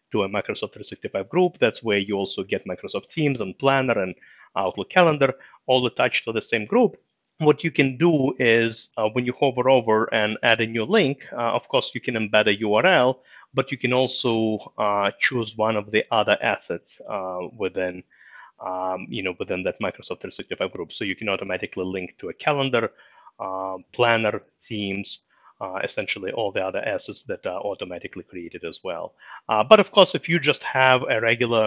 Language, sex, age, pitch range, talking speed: English, male, 30-49, 95-130 Hz, 190 wpm